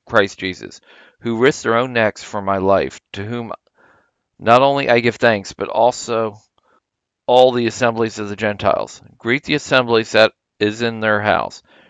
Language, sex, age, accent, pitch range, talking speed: English, male, 50-69, American, 105-125 Hz, 165 wpm